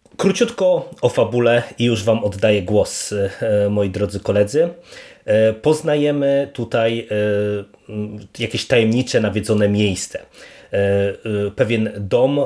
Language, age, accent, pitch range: Polish, 30-49, native, 105-120 Hz